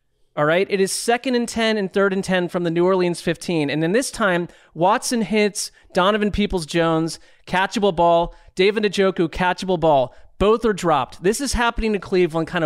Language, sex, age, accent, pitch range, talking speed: English, male, 30-49, American, 165-200 Hz, 190 wpm